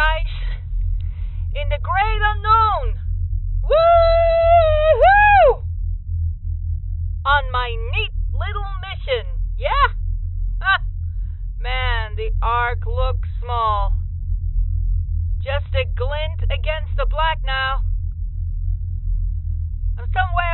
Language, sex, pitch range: English, female, 85-90 Hz